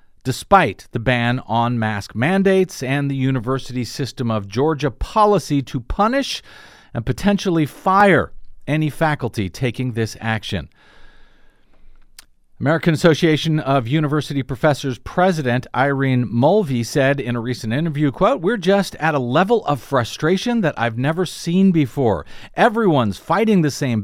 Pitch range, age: 125-180 Hz, 50-69